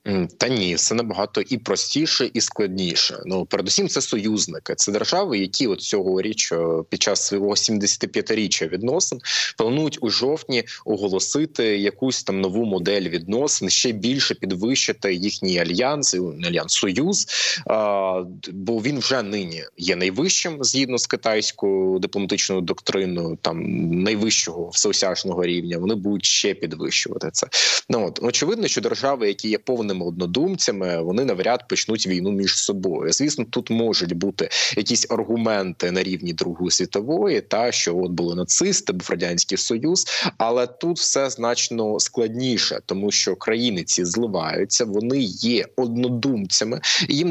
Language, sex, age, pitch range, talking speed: Ukrainian, male, 20-39, 95-125 Hz, 130 wpm